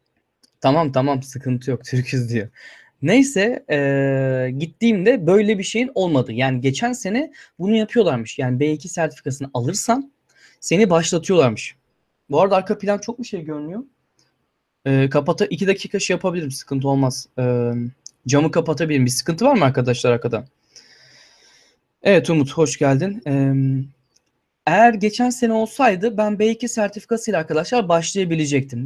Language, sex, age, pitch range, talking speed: Turkish, male, 20-39, 135-200 Hz, 130 wpm